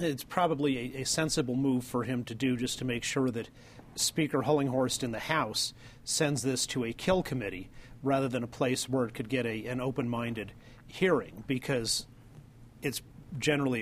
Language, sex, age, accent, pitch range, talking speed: English, male, 40-59, American, 120-140 Hz, 175 wpm